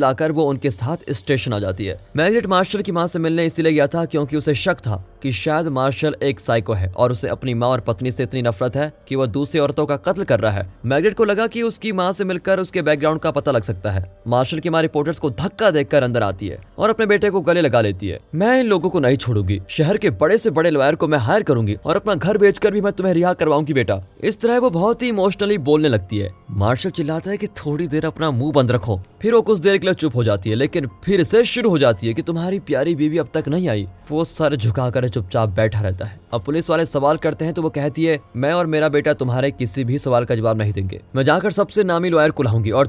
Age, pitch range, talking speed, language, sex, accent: 20-39, 120-180 Hz, 260 wpm, Hindi, male, native